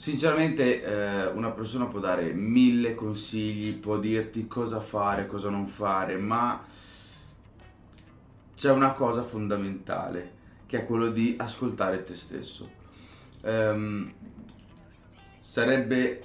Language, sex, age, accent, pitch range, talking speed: Italian, male, 20-39, native, 100-115 Hz, 100 wpm